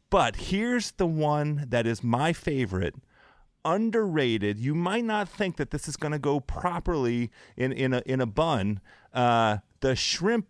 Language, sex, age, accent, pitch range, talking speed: English, male, 30-49, American, 115-155 Hz, 165 wpm